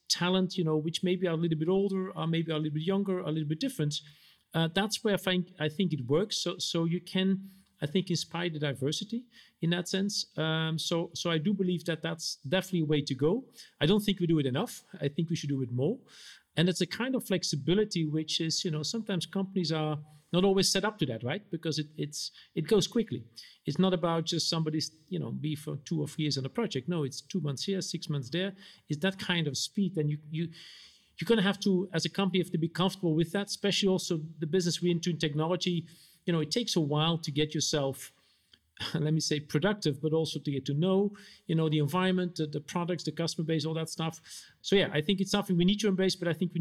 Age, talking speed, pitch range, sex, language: 50-69, 250 wpm, 155-185 Hz, male, English